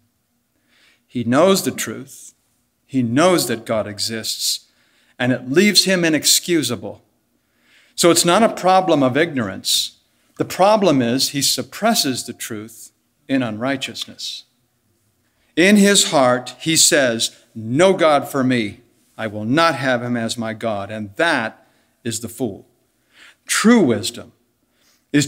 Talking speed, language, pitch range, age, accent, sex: 130 wpm, English, 120-170 Hz, 60-79, American, male